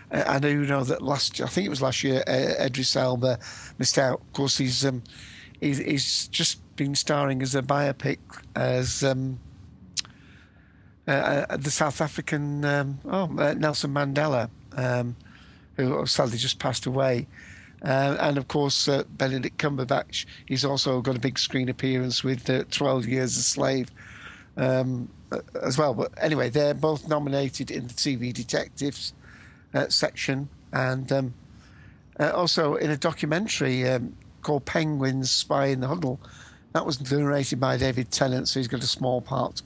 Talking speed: 155 wpm